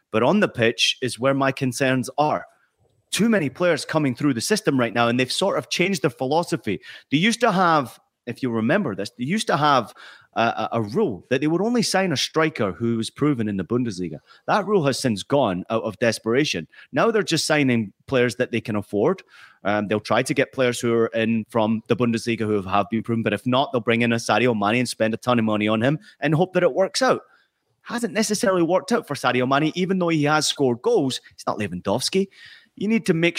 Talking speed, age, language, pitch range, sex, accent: 230 wpm, 30-49, English, 115-150 Hz, male, British